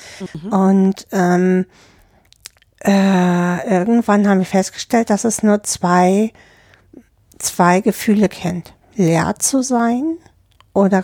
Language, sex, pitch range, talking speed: German, female, 170-200 Hz, 100 wpm